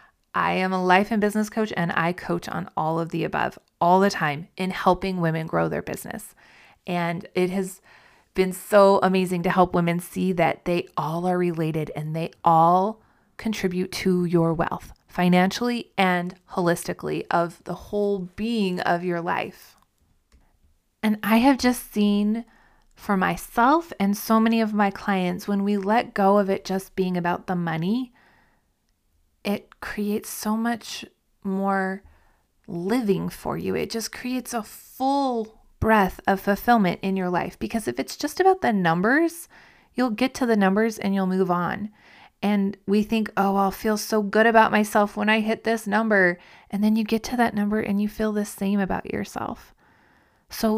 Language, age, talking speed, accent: English, 30-49, 170 wpm, American